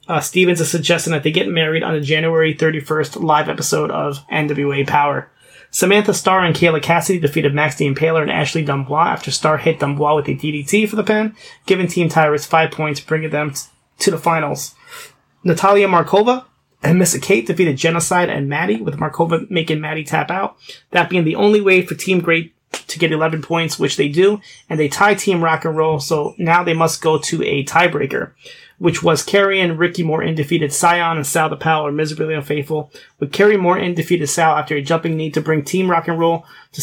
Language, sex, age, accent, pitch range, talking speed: English, male, 30-49, American, 155-180 Hz, 205 wpm